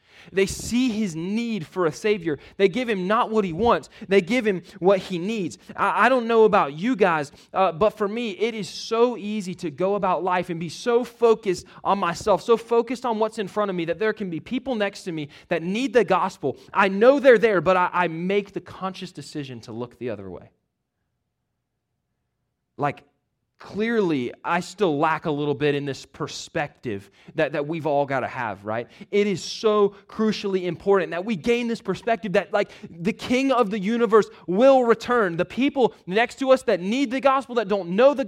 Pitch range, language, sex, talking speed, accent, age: 175-235 Hz, English, male, 205 wpm, American, 20-39